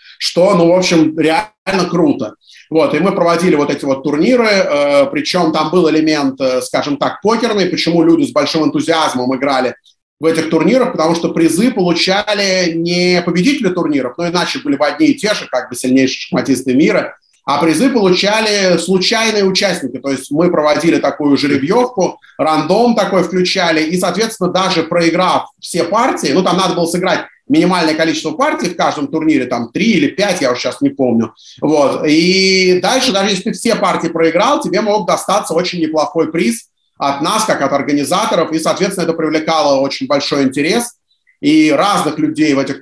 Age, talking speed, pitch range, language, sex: 30-49, 175 wpm, 150-190 Hz, Russian, male